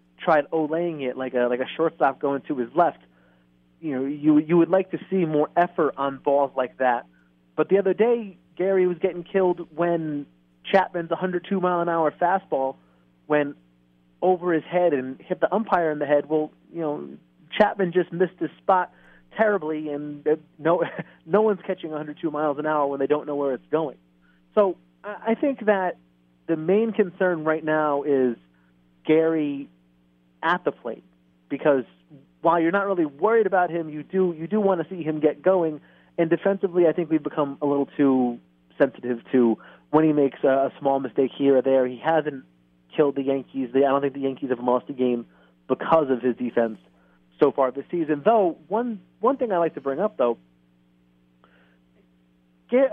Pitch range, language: 120-175 Hz, English